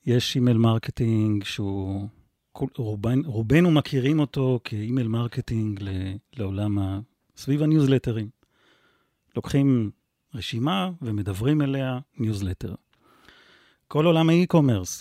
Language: English